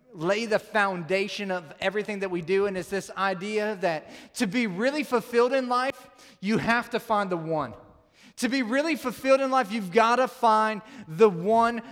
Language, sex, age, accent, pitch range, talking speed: English, male, 30-49, American, 185-235 Hz, 185 wpm